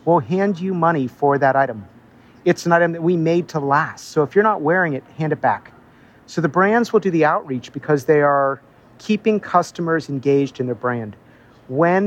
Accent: American